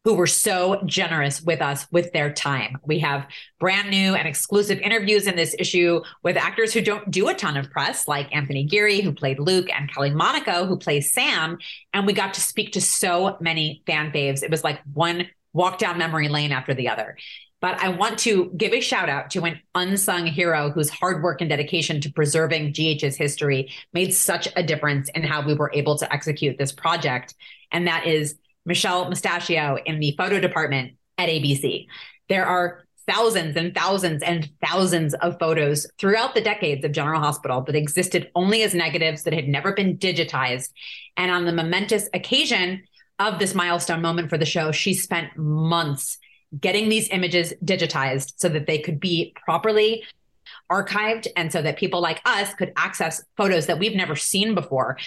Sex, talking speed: female, 185 wpm